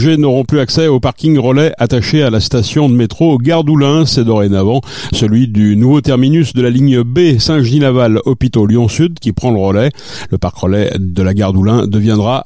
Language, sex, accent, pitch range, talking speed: French, male, French, 110-150 Hz, 180 wpm